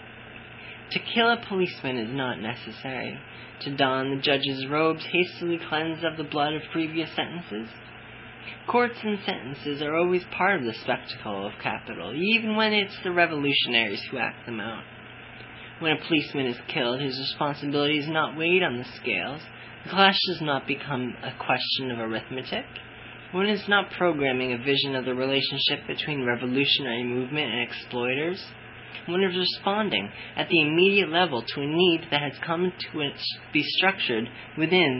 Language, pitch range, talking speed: English, 125-170 Hz, 160 wpm